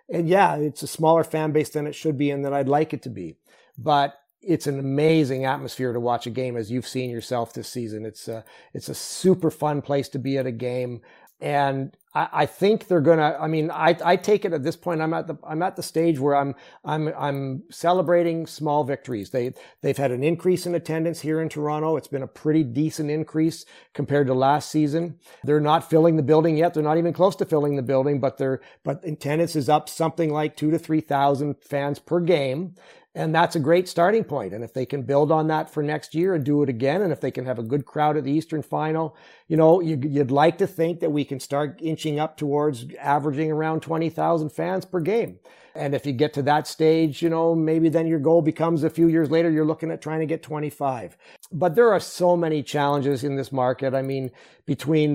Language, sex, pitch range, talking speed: English, male, 135-160 Hz, 230 wpm